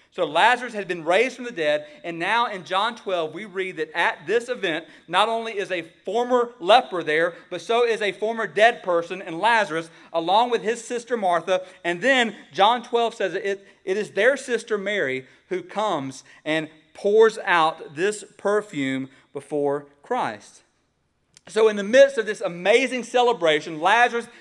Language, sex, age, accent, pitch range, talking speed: English, male, 40-59, American, 150-215 Hz, 170 wpm